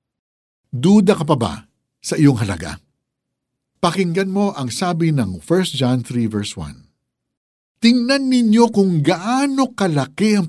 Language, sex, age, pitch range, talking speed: Filipino, male, 60-79, 105-150 Hz, 130 wpm